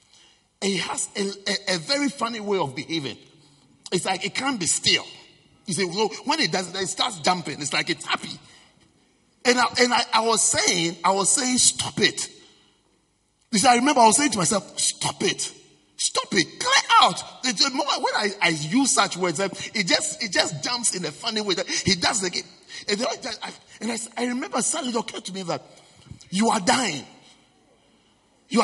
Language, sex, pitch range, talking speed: English, male, 180-255 Hz, 200 wpm